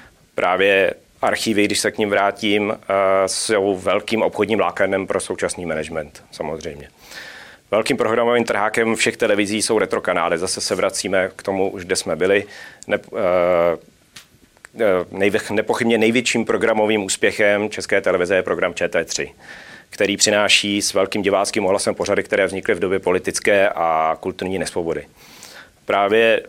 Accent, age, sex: native, 40-59, male